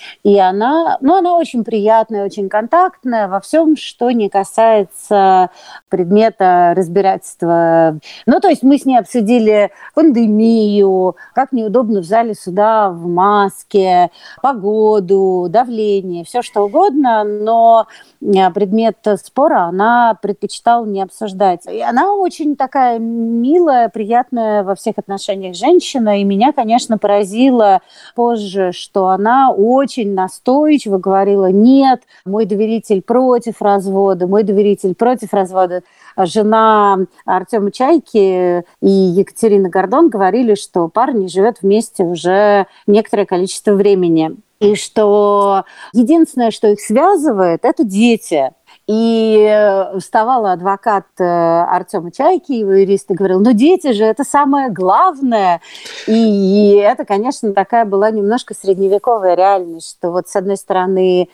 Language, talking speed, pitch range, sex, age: Russian, 120 wpm, 190-235 Hz, female, 40-59